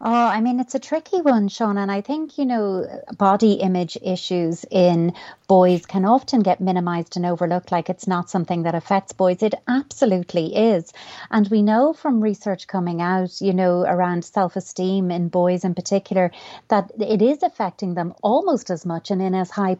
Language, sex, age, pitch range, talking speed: English, female, 30-49, 180-215 Hz, 185 wpm